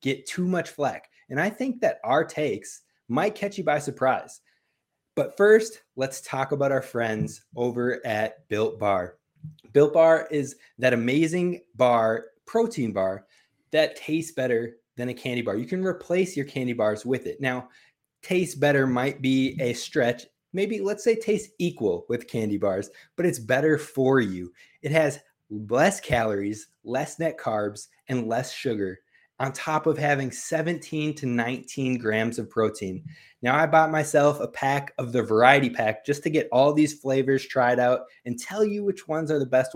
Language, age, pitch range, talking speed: English, 20-39, 120-160 Hz, 175 wpm